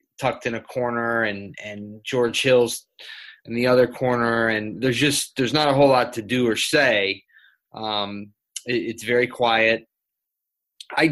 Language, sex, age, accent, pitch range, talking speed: English, male, 20-39, American, 110-135 Hz, 155 wpm